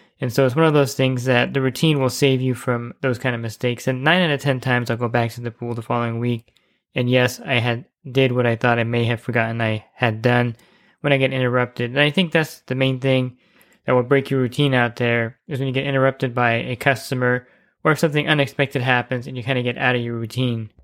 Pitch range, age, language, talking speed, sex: 120-140 Hz, 20-39, English, 255 wpm, male